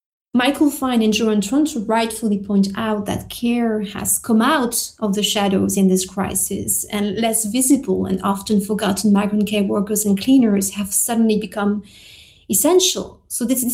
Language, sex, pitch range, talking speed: English, female, 195-240 Hz, 155 wpm